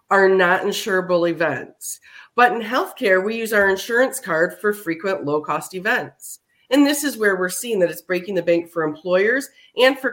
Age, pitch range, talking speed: 30-49, 170-235 Hz, 190 wpm